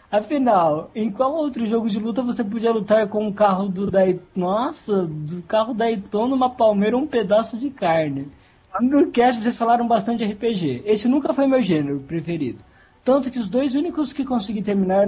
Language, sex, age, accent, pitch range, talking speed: Portuguese, male, 20-39, Brazilian, 170-230 Hz, 180 wpm